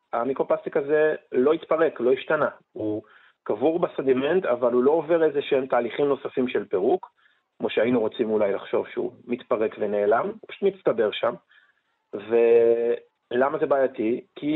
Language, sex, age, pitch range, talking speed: Hebrew, male, 30-49, 120-180 Hz, 145 wpm